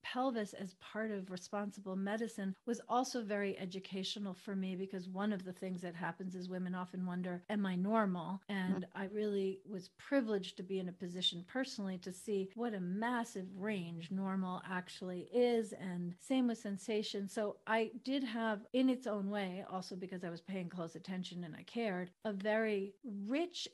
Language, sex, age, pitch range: English, female, 40-59, 190-225 Hz